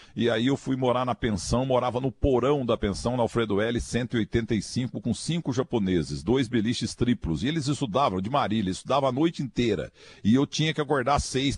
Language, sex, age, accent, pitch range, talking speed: Portuguese, male, 50-69, Brazilian, 115-140 Hz, 195 wpm